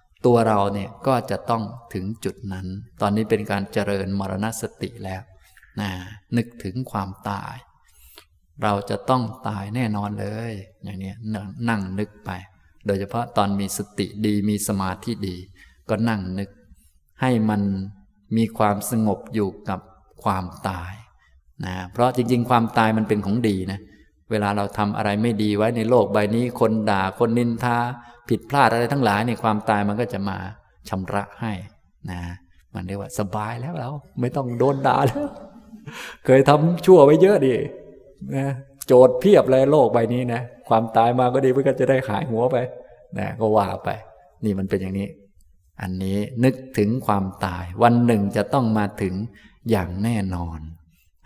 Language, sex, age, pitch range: Thai, male, 20-39, 100-120 Hz